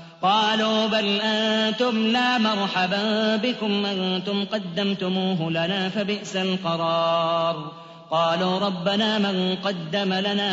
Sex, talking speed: male, 90 wpm